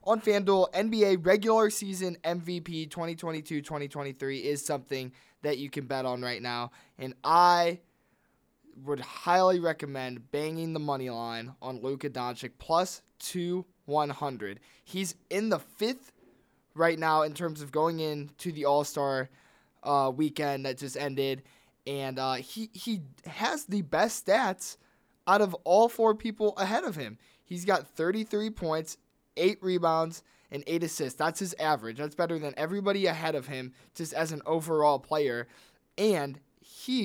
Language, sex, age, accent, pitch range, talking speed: English, male, 20-39, American, 135-175 Hz, 145 wpm